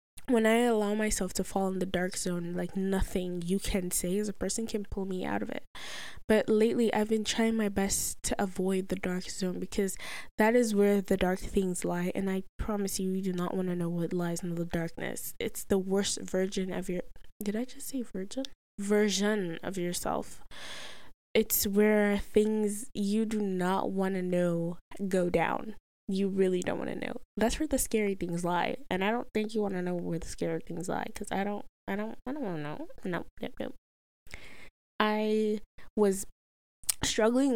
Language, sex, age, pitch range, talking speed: English, female, 10-29, 180-215 Hz, 200 wpm